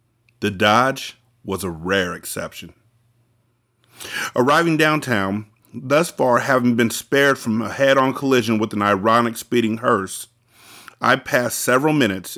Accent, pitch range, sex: American, 110-130 Hz, male